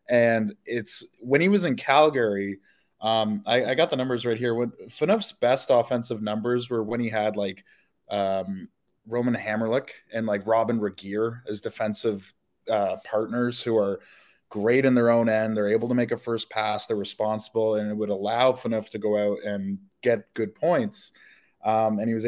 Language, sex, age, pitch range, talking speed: English, male, 20-39, 110-130 Hz, 180 wpm